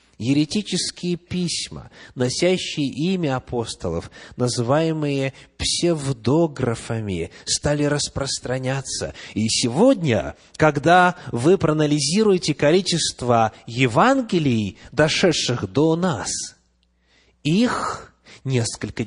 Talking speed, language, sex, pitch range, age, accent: 65 wpm, Russian, male, 115-160 Hz, 30-49, native